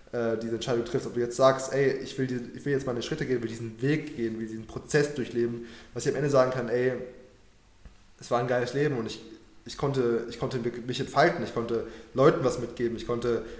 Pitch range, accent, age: 115-135 Hz, German, 20-39